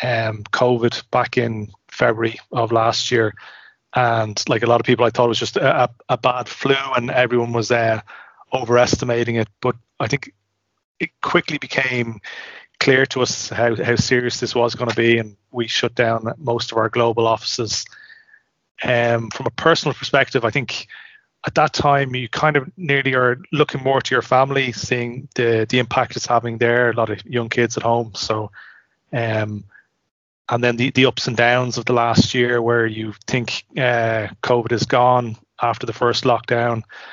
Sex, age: male, 30-49